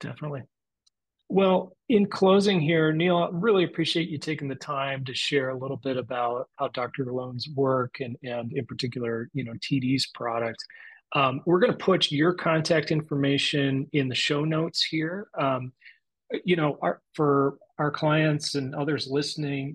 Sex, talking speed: male, 160 wpm